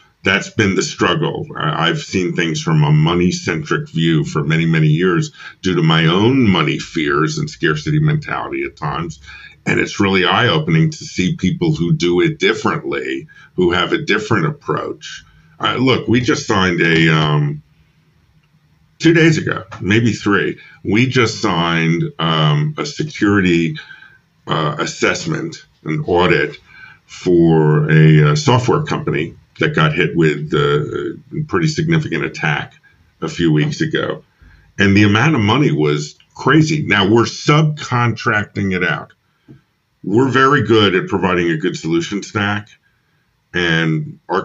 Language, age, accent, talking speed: English, 50-69, American, 140 wpm